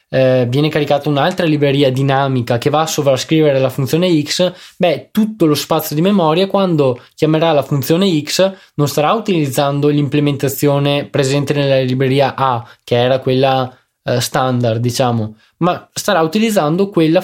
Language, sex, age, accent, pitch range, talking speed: Italian, male, 20-39, native, 130-180 Hz, 145 wpm